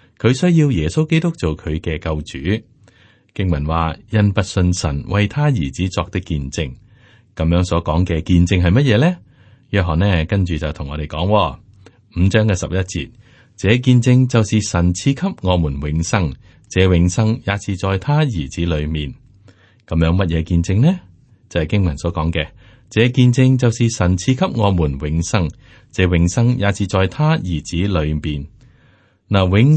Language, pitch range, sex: Chinese, 85-115 Hz, male